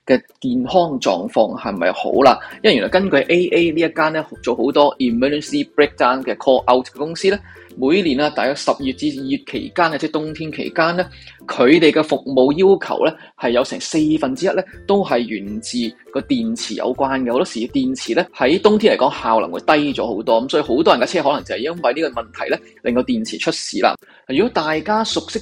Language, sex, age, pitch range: Chinese, male, 20-39, 145-225 Hz